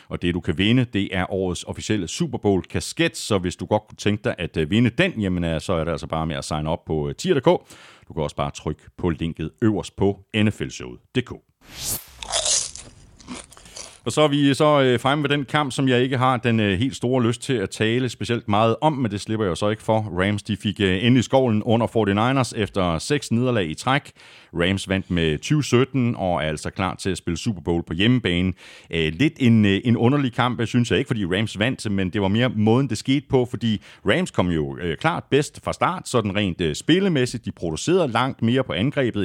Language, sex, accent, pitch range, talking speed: Danish, male, native, 95-125 Hz, 210 wpm